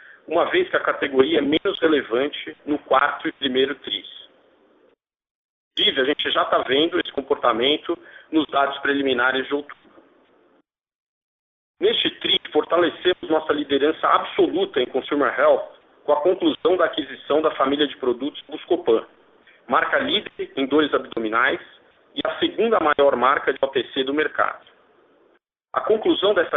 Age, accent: 50-69, Brazilian